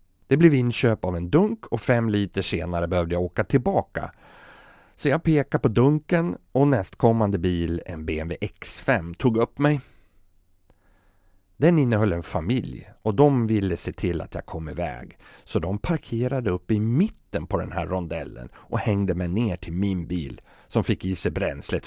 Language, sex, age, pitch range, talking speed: Swedish, male, 40-59, 85-115 Hz, 175 wpm